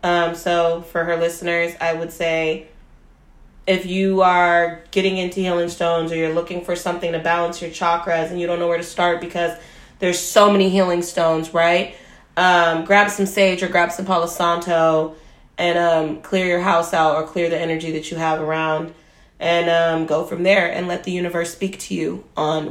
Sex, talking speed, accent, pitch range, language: female, 195 wpm, American, 160-180 Hz, English